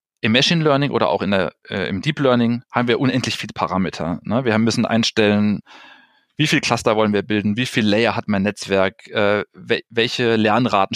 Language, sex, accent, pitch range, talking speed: English, male, German, 105-130 Hz, 190 wpm